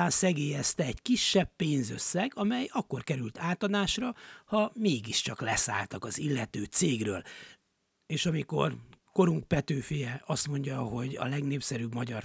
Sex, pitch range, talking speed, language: male, 120-180 Hz, 120 wpm, Hungarian